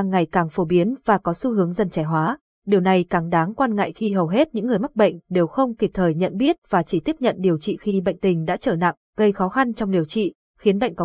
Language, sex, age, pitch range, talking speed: Vietnamese, female, 20-39, 180-230 Hz, 275 wpm